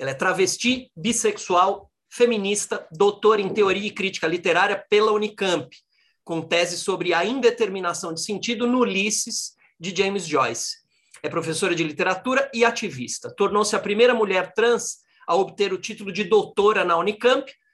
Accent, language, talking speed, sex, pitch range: Brazilian, Portuguese, 150 wpm, male, 180-240 Hz